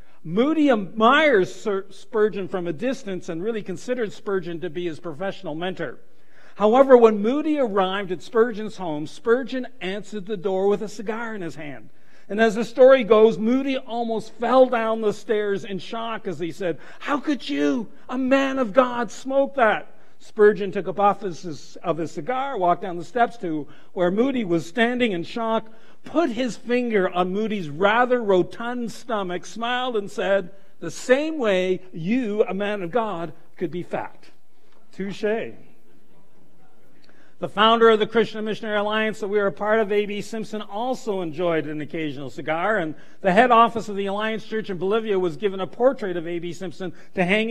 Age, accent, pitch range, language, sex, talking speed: 50-69, American, 175-225 Hz, English, male, 175 wpm